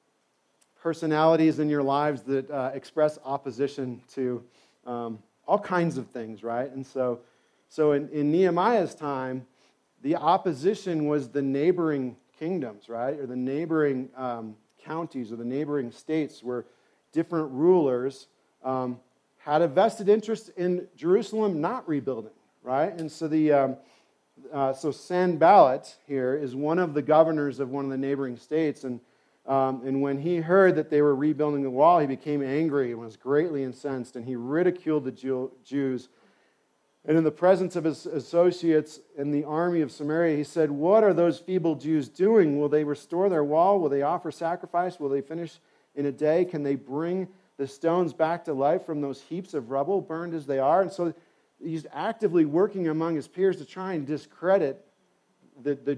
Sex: male